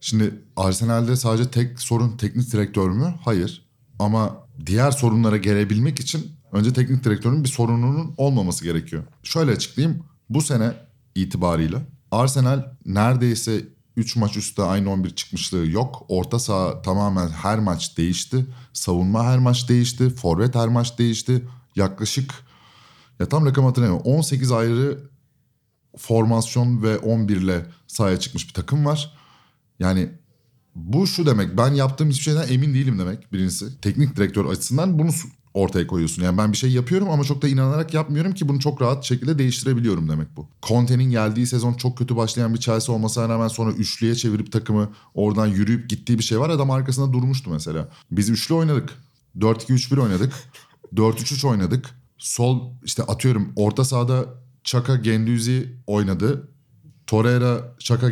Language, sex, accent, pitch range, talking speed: Turkish, male, native, 110-135 Hz, 145 wpm